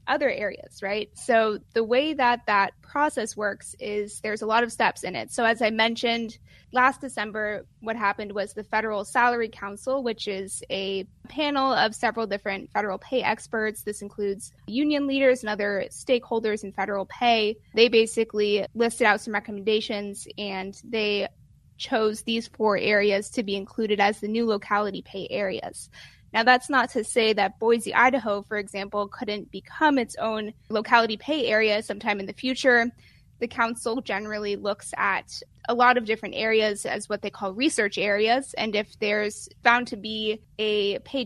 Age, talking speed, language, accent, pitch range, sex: 20-39, 170 wpm, English, American, 205-235 Hz, female